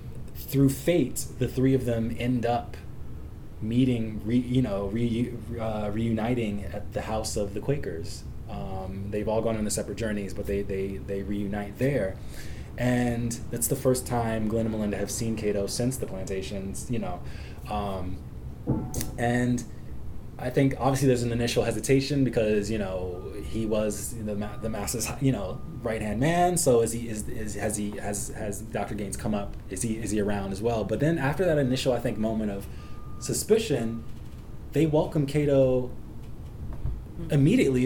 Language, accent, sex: English, American, male